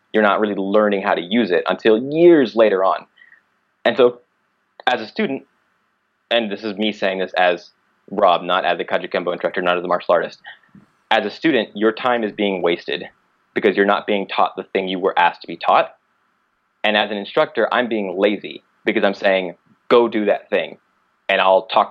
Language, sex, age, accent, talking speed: English, male, 20-39, American, 200 wpm